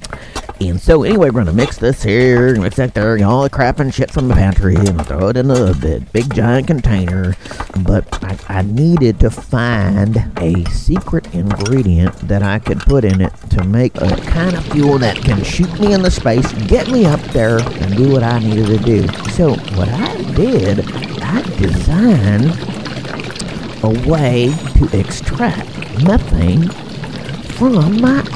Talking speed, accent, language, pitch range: 170 wpm, American, English, 95-135 Hz